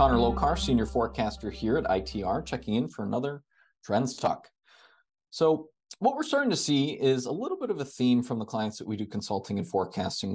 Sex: male